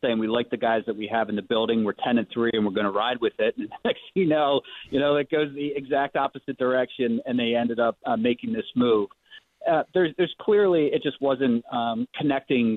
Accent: American